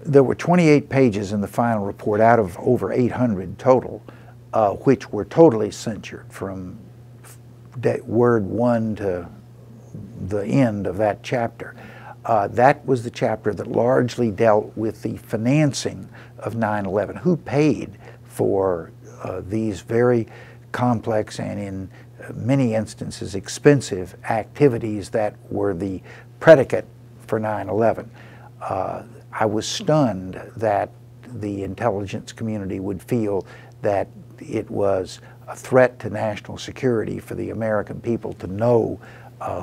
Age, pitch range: 60-79, 105-120 Hz